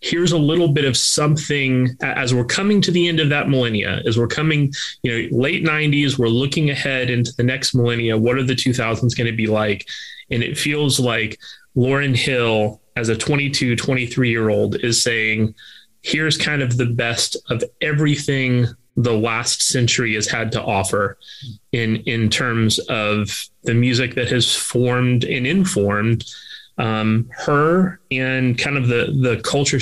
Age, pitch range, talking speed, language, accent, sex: 30-49, 120-145 Hz, 170 wpm, English, American, male